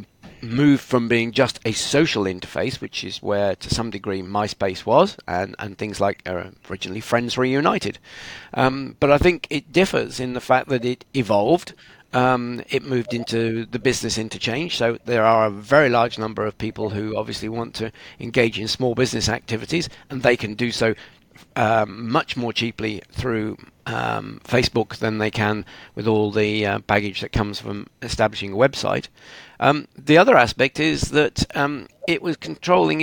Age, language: 50-69, English